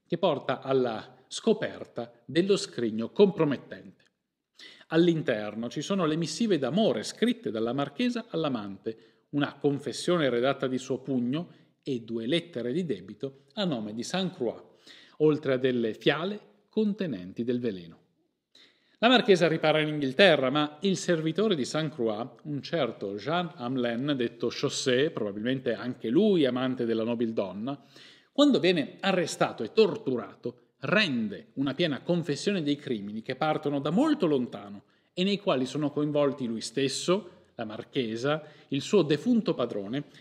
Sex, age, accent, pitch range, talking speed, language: male, 40-59, native, 120-180 Hz, 140 wpm, Italian